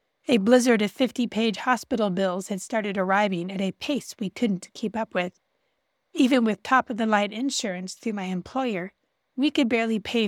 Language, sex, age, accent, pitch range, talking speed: English, female, 30-49, American, 200-245 Hz, 165 wpm